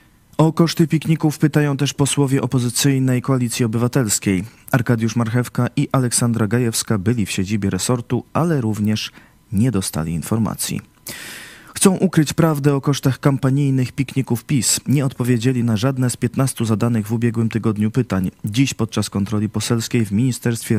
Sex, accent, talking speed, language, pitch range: male, native, 140 wpm, Polish, 105-135 Hz